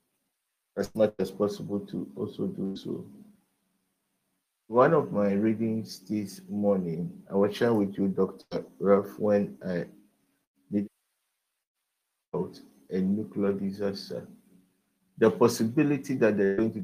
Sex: male